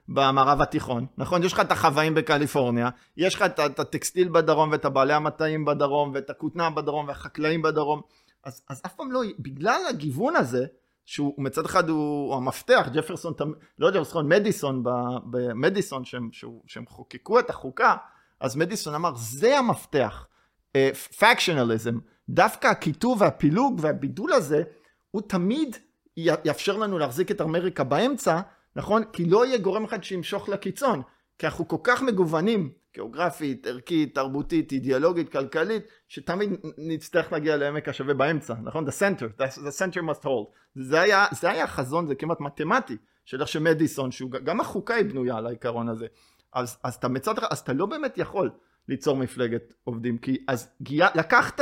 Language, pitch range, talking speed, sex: Hebrew, 135-180 Hz, 150 wpm, male